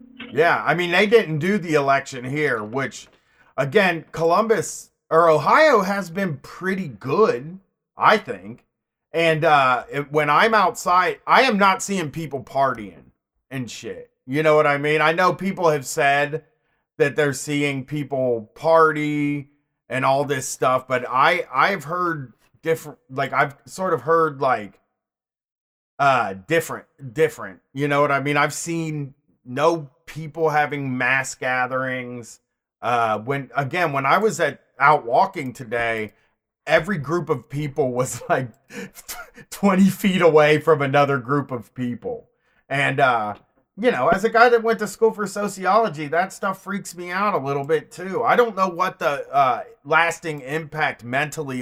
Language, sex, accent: English, male, American